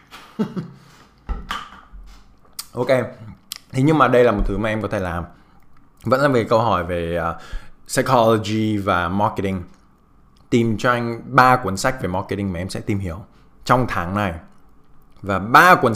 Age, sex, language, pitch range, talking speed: 20-39, male, Vietnamese, 100-135 Hz, 160 wpm